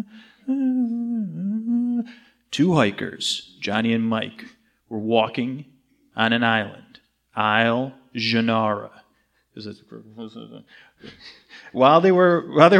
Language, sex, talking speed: English, male, 80 wpm